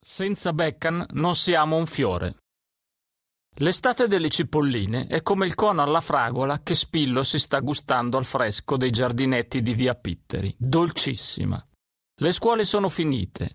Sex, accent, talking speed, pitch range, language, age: male, native, 140 wpm, 125-170 Hz, Italian, 40-59